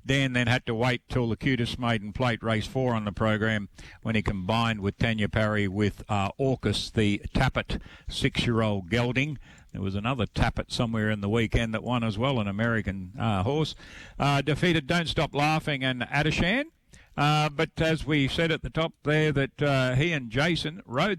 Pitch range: 110-140 Hz